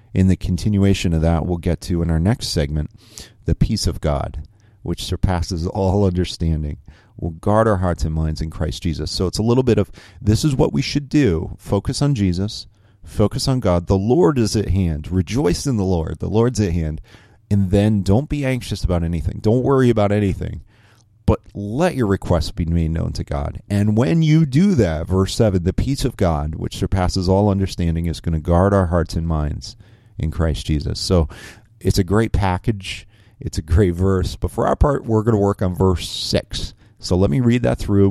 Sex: male